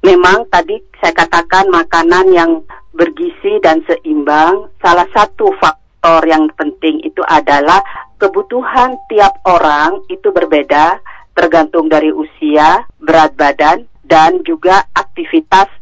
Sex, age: female, 40-59